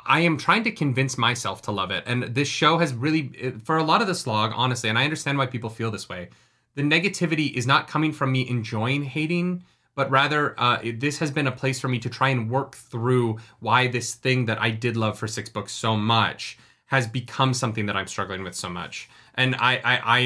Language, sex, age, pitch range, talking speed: English, male, 30-49, 110-135 Hz, 230 wpm